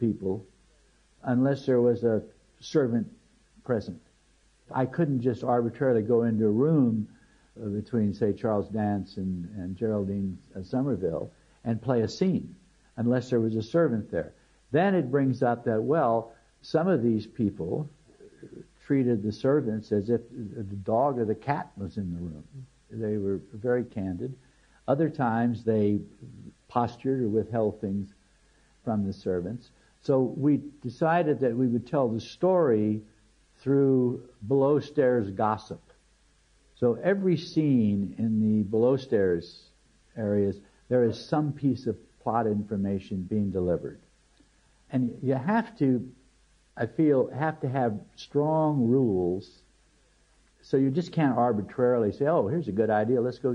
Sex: male